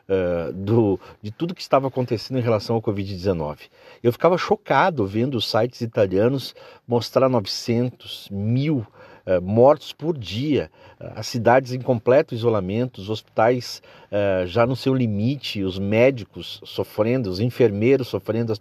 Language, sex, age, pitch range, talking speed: Portuguese, male, 50-69, 120-175 Hz, 130 wpm